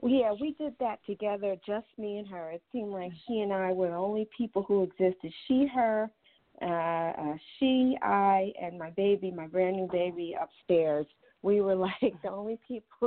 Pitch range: 175-215 Hz